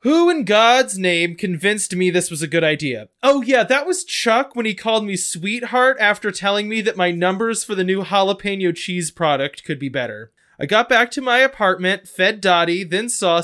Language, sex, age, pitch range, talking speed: English, male, 20-39, 165-230 Hz, 205 wpm